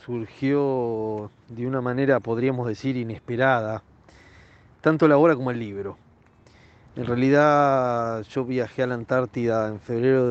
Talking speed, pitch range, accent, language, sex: 135 wpm, 115-145 Hz, Argentinian, Spanish, male